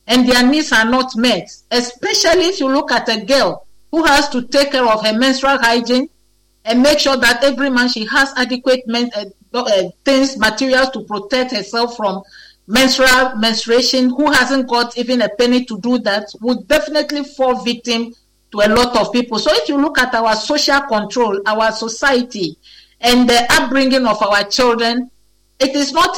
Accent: Nigerian